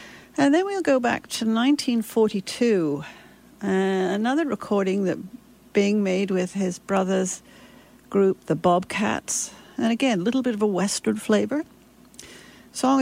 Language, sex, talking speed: English, female, 135 wpm